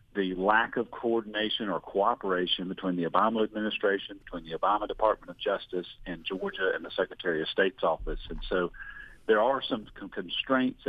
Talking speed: 165 wpm